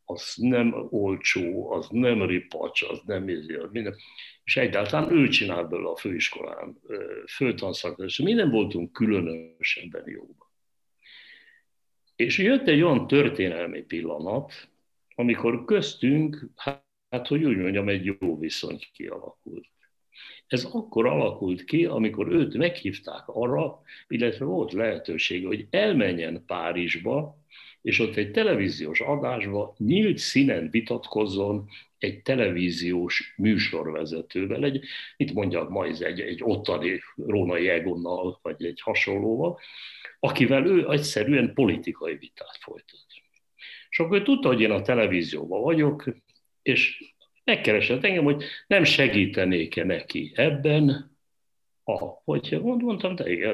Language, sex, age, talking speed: Hungarian, male, 60-79, 115 wpm